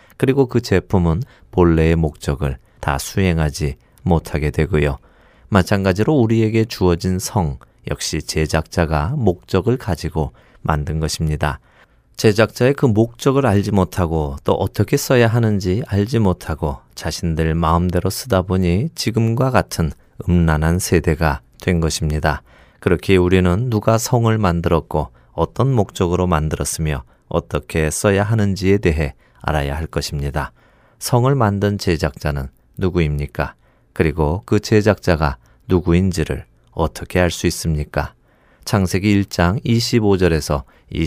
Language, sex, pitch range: Korean, male, 80-105 Hz